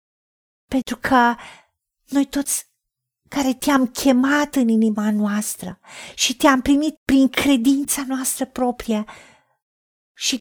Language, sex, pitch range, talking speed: Romanian, female, 225-275 Hz, 105 wpm